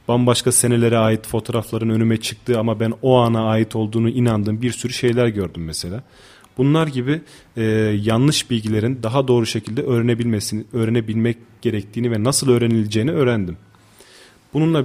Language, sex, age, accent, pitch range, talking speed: Turkish, male, 30-49, native, 110-125 Hz, 135 wpm